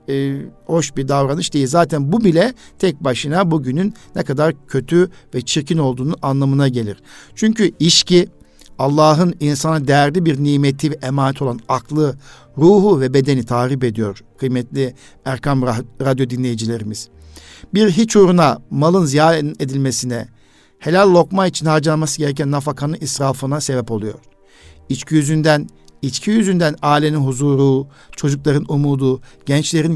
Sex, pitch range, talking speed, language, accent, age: male, 130-165 Hz, 125 wpm, Turkish, native, 60-79